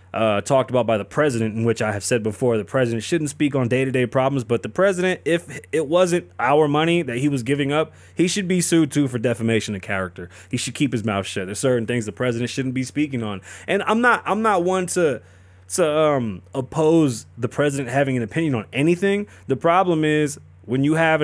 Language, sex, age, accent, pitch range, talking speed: English, male, 20-39, American, 110-160 Hz, 225 wpm